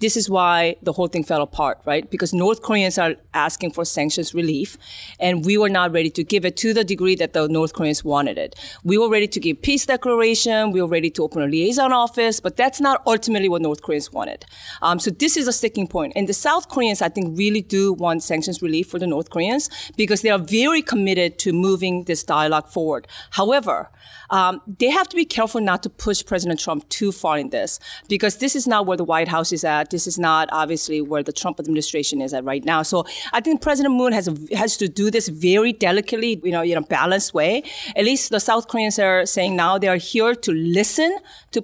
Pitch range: 170-230 Hz